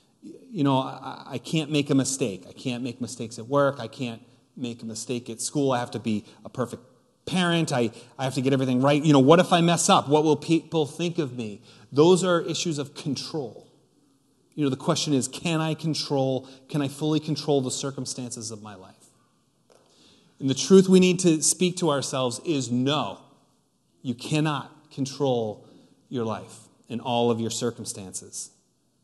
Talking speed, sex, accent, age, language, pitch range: 185 wpm, male, American, 30-49, English, 130-170 Hz